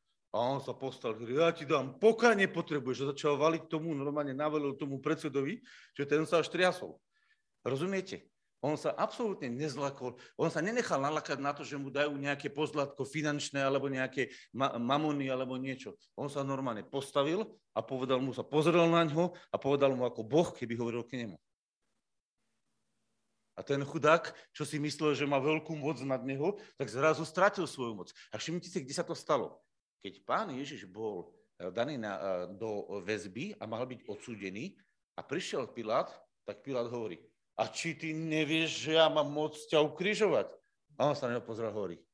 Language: Slovak